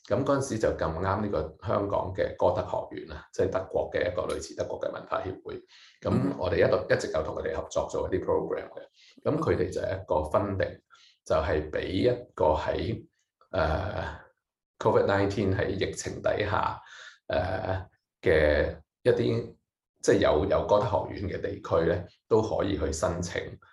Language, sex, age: English, male, 30-49